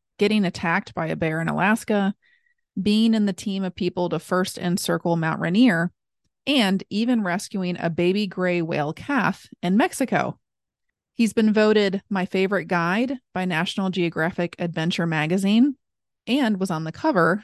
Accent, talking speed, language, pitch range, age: American, 150 wpm, English, 170-210 Hz, 30-49